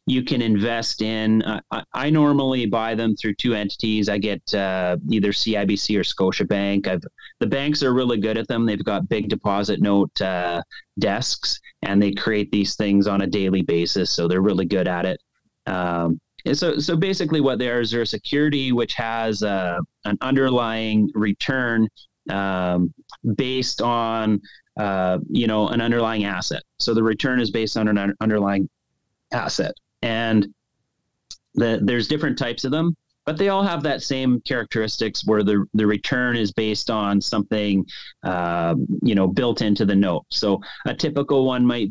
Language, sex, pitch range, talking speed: English, male, 100-120 Hz, 170 wpm